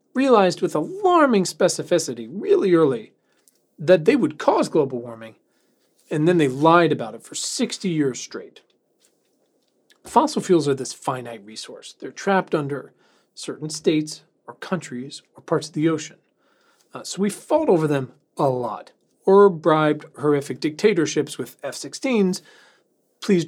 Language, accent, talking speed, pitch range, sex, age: English, American, 140 wpm, 150-195 Hz, male, 40-59